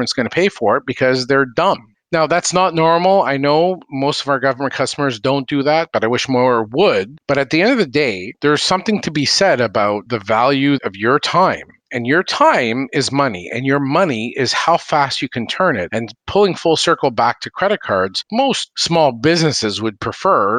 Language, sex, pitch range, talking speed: English, male, 130-190 Hz, 215 wpm